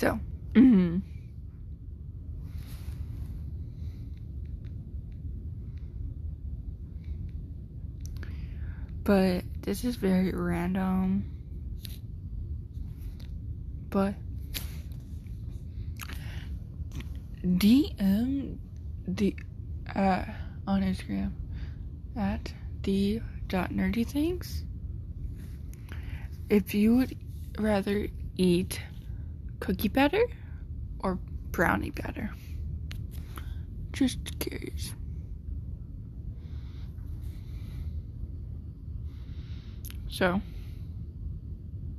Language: English